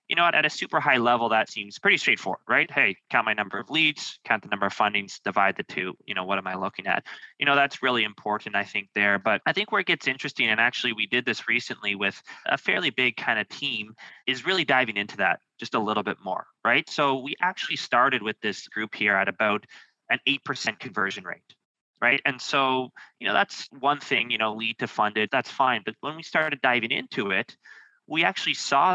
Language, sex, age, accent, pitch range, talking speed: English, male, 20-39, American, 110-140 Hz, 230 wpm